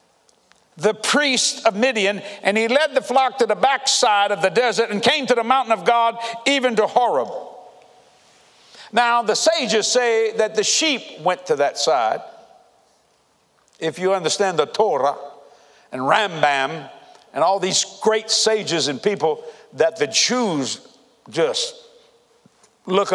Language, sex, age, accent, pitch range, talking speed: English, male, 60-79, American, 205-265 Hz, 145 wpm